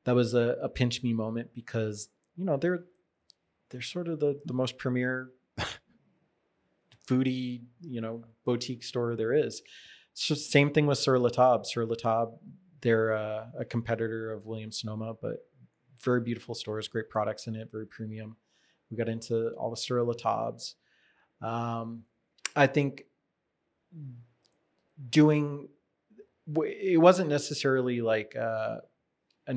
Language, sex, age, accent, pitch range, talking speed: English, male, 30-49, American, 115-135 Hz, 135 wpm